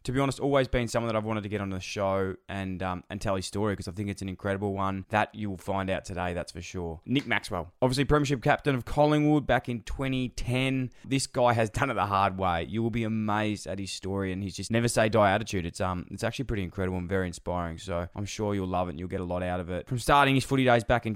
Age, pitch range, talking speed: 20-39, 95-110 Hz, 270 wpm